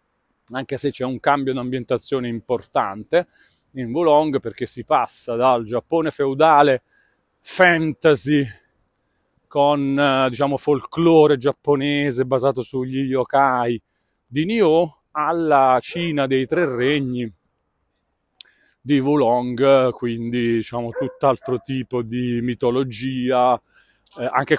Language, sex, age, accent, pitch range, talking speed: Italian, male, 30-49, native, 120-140 Hz, 100 wpm